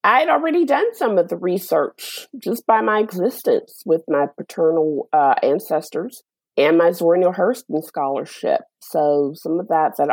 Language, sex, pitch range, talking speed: English, female, 145-225 Hz, 165 wpm